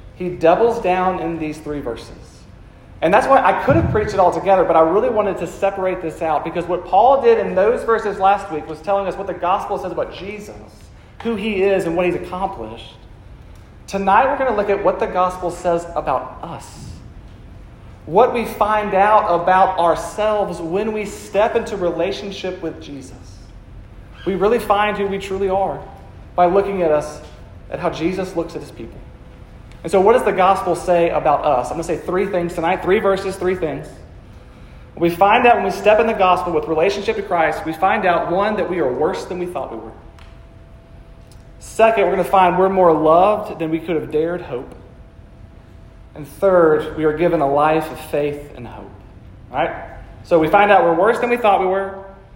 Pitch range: 150-195 Hz